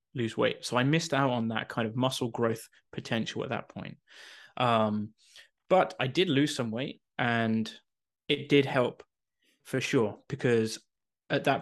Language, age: English, 20-39